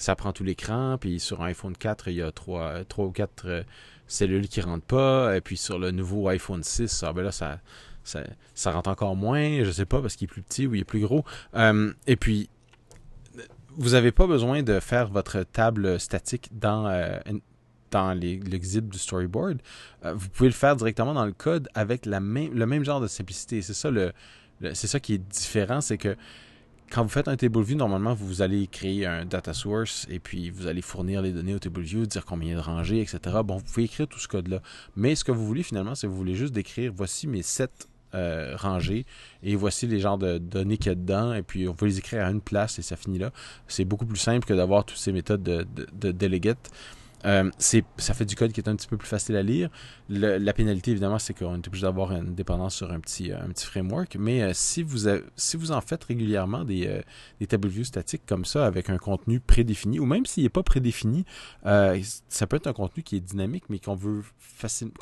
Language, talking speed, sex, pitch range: French, 240 wpm, male, 95-120 Hz